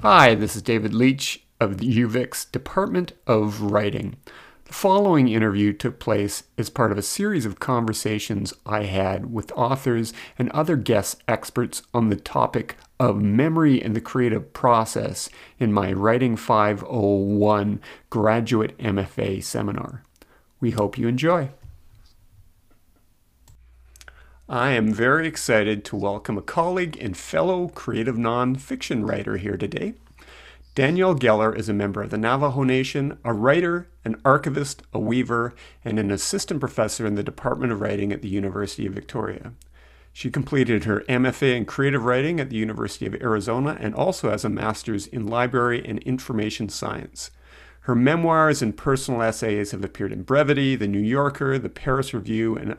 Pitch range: 105-130 Hz